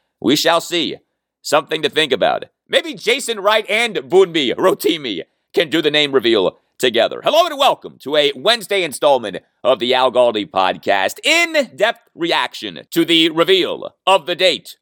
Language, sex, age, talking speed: English, male, 40-59, 160 wpm